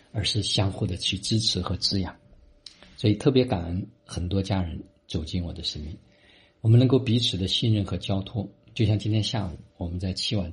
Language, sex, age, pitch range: Chinese, male, 50-69, 90-115 Hz